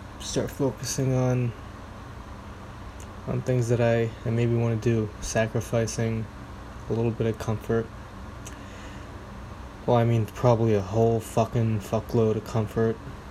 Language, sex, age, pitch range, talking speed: English, male, 20-39, 100-115 Hz, 125 wpm